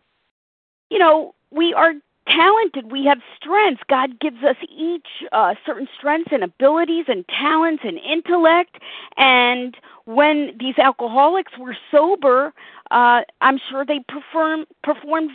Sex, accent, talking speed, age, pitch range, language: female, American, 130 wpm, 40-59, 245-310 Hz, English